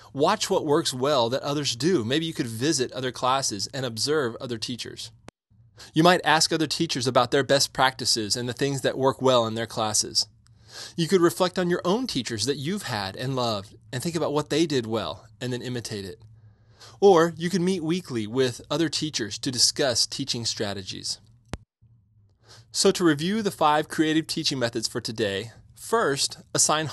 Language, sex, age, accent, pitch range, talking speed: English, male, 20-39, American, 110-155 Hz, 185 wpm